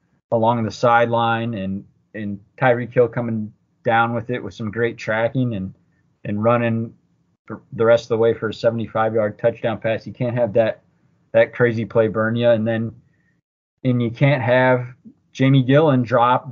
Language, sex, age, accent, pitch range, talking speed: English, male, 20-39, American, 110-125 Hz, 170 wpm